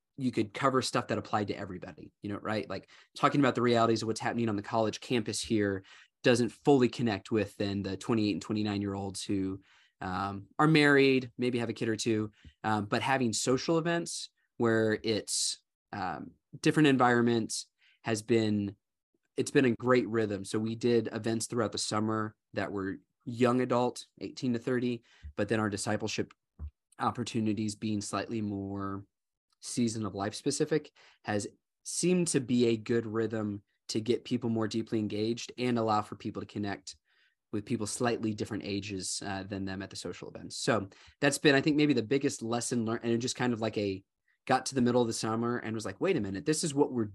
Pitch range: 105-125 Hz